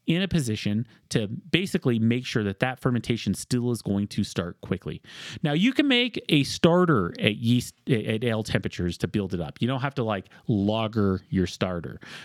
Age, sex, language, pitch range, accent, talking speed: 30-49, male, English, 105-145 Hz, American, 190 wpm